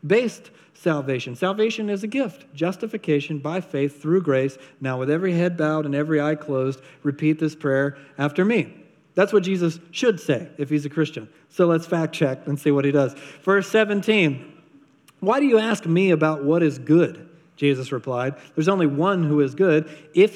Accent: American